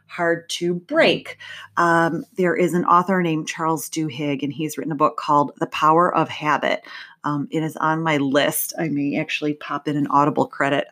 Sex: female